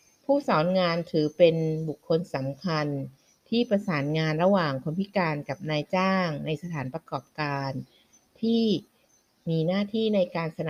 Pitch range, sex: 150-195 Hz, female